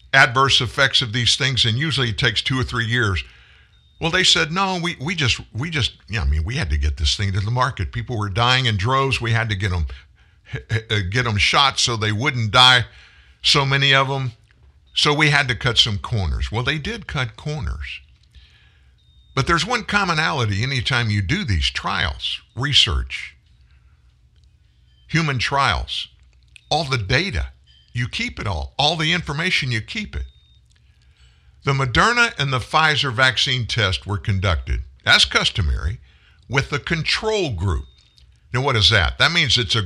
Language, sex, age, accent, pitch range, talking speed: English, male, 60-79, American, 85-135 Hz, 175 wpm